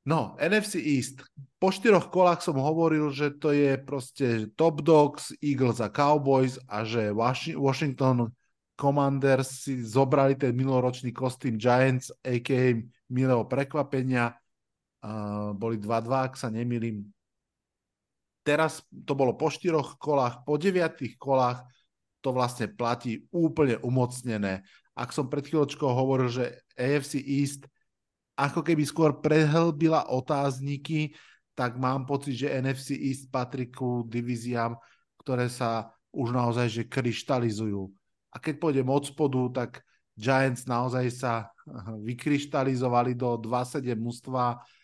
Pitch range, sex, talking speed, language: 120-145 Hz, male, 120 wpm, Slovak